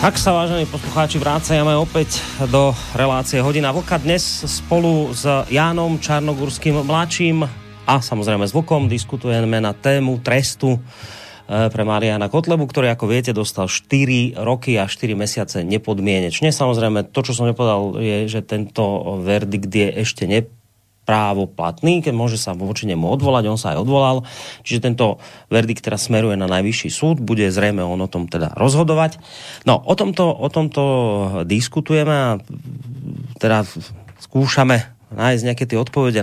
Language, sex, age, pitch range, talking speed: Slovak, male, 30-49, 110-145 Hz, 145 wpm